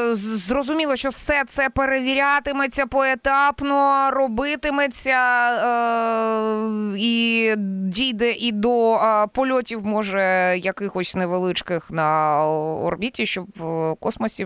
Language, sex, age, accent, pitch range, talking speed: Ukrainian, female, 20-39, native, 170-255 Hz, 90 wpm